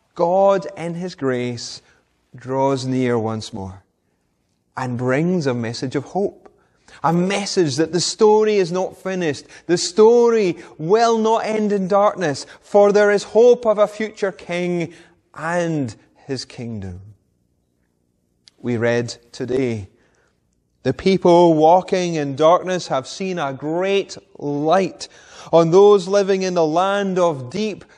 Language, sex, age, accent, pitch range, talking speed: English, male, 30-49, British, 110-180 Hz, 130 wpm